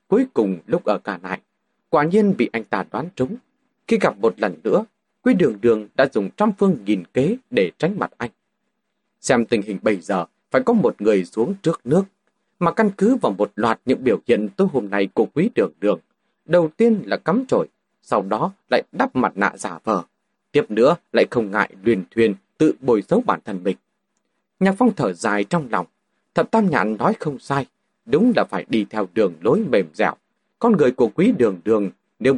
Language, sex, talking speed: Vietnamese, male, 210 wpm